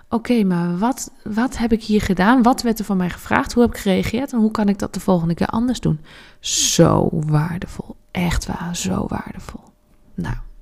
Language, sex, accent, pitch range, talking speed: Dutch, female, Dutch, 180-225 Hz, 205 wpm